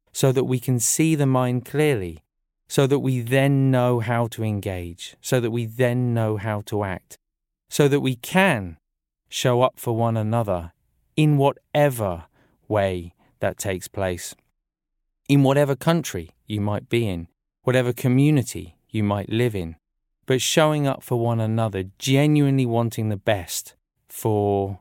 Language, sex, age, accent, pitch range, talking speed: English, male, 30-49, British, 100-135 Hz, 150 wpm